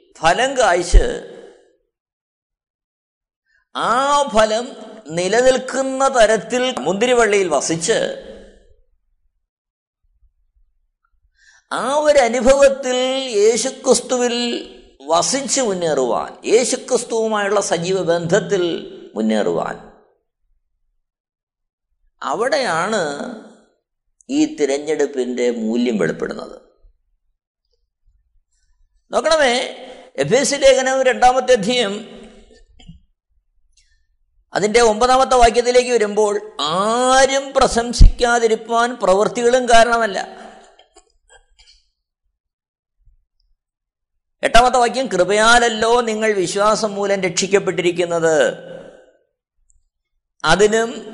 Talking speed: 50 wpm